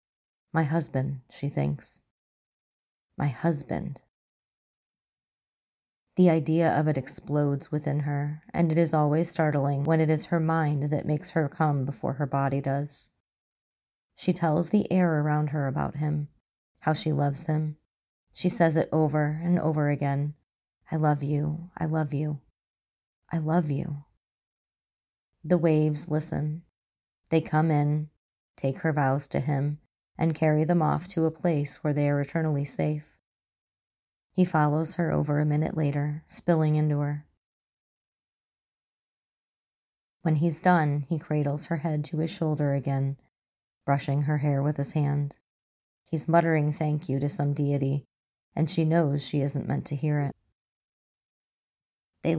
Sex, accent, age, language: female, American, 30-49, English